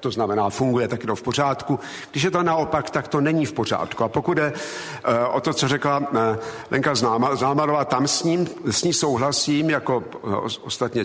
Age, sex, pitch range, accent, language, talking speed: 50-69, male, 130-150 Hz, native, Czech, 185 wpm